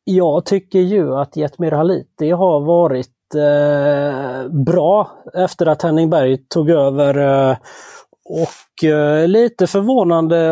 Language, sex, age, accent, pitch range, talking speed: Swedish, male, 30-49, native, 145-180 Hz, 120 wpm